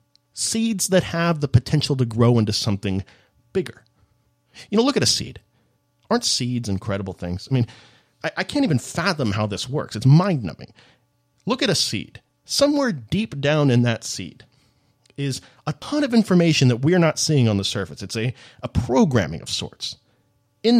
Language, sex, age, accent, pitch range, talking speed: English, male, 30-49, American, 115-160 Hz, 175 wpm